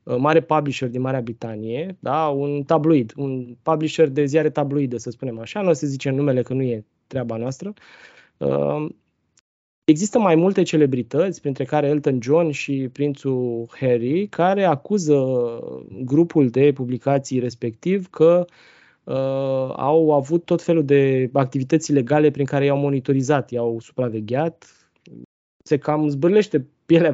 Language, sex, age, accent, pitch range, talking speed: Romanian, male, 20-39, native, 130-155 Hz, 135 wpm